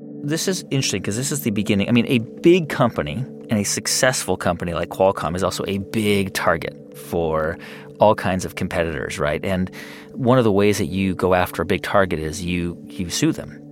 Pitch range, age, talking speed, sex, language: 90-120 Hz, 30-49, 205 wpm, male, English